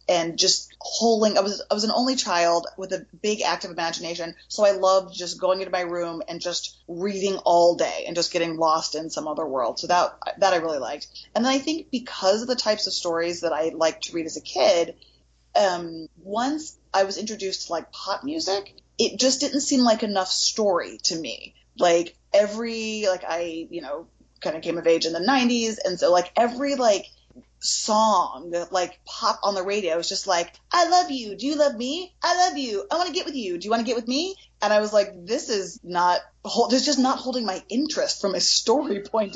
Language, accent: English, American